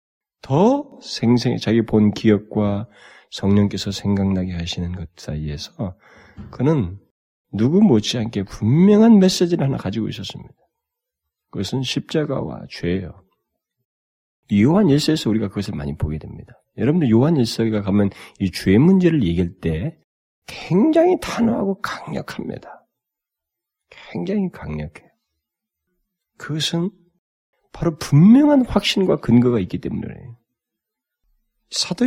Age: 40-59